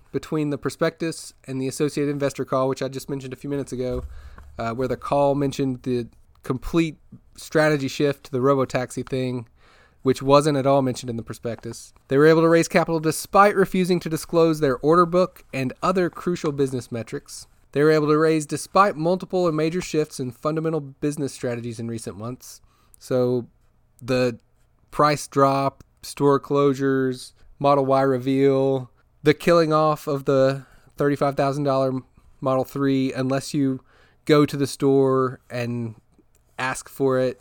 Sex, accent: male, American